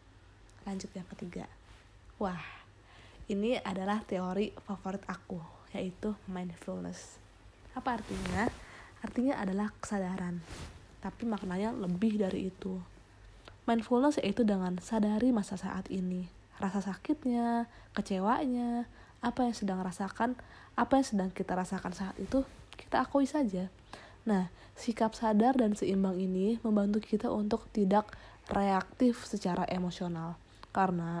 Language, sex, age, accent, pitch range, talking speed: Indonesian, female, 20-39, native, 180-215 Hz, 115 wpm